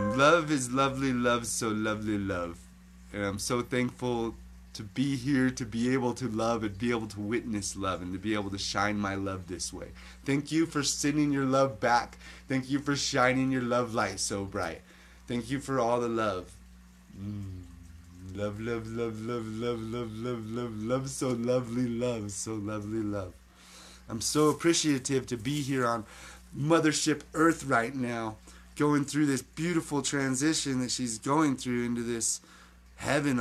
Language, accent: English, American